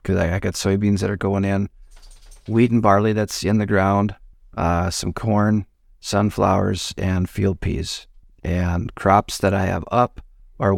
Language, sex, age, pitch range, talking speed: English, male, 40-59, 95-115 Hz, 160 wpm